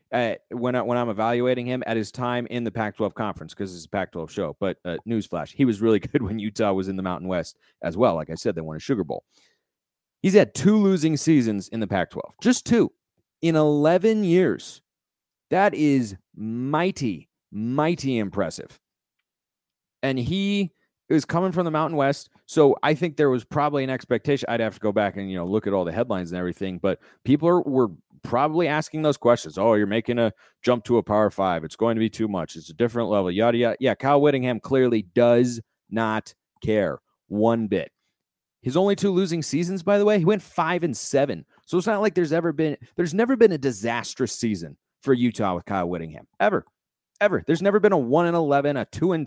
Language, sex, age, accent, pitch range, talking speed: English, male, 30-49, American, 110-150 Hz, 210 wpm